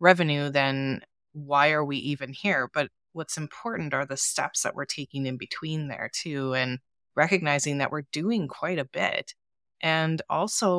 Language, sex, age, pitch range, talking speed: English, female, 20-39, 140-170 Hz, 165 wpm